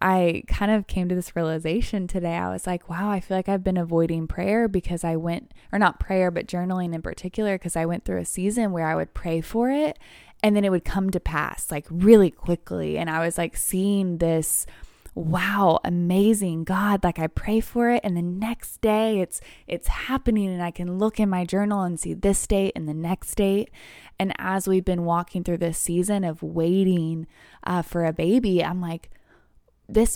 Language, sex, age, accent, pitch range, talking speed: English, female, 20-39, American, 175-210 Hz, 205 wpm